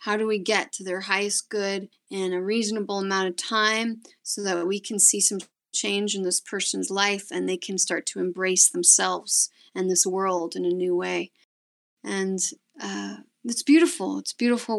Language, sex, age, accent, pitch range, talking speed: English, female, 30-49, American, 185-215 Hz, 185 wpm